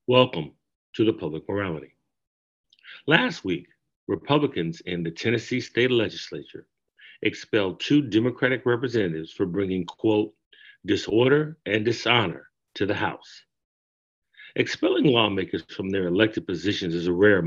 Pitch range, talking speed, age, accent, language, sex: 90-120 Hz, 120 wpm, 50-69, American, English, male